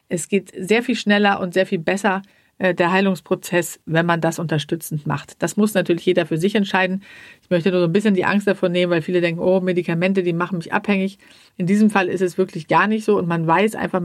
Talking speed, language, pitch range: 240 wpm, German, 170-200 Hz